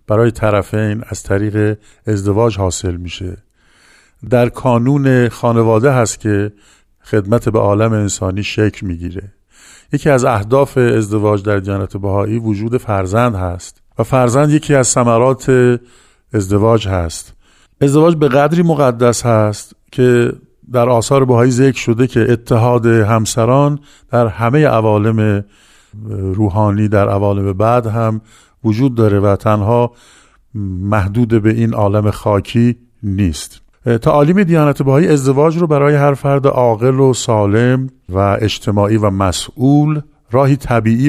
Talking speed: 125 wpm